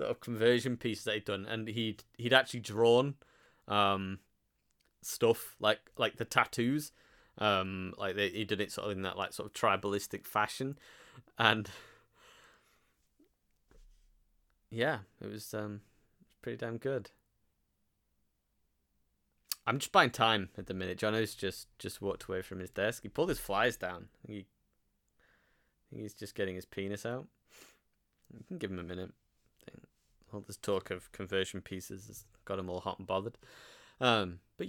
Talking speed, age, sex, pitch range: 155 wpm, 20-39, male, 95-120 Hz